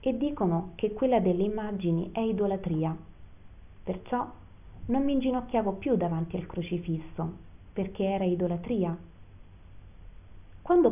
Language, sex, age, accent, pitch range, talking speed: Italian, female, 30-49, native, 160-205 Hz, 110 wpm